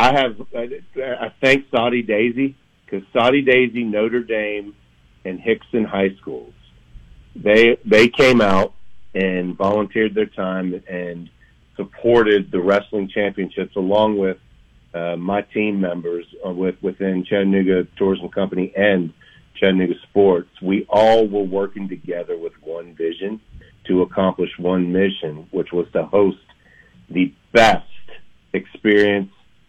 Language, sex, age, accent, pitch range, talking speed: English, male, 40-59, American, 85-105 Hz, 125 wpm